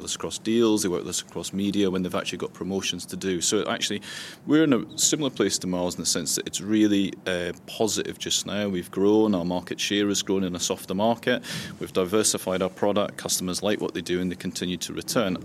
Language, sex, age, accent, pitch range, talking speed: English, male, 30-49, British, 90-105 Hz, 225 wpm